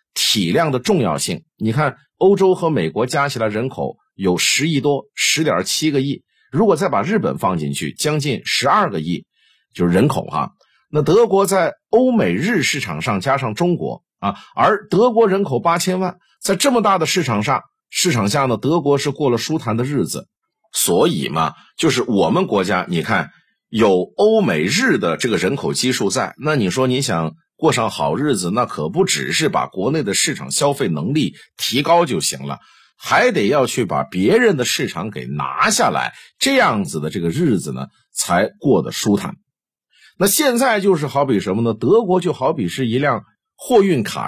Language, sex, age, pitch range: Chinese, male, 50-69, 130-205 Hz